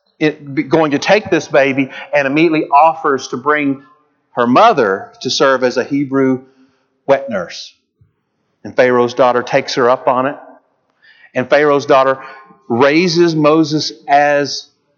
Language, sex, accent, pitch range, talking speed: English, male, American, 135-215 Hz, 135 wpm